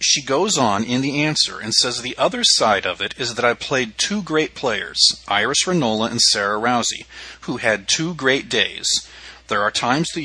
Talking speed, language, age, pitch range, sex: 200 wpm, English, 40-59, 110-160 Hz, male